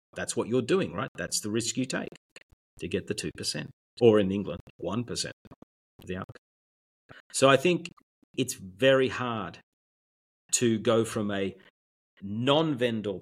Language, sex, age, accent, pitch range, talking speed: English, male, 40-59, Australian, 95-120 Hz, 145 wpm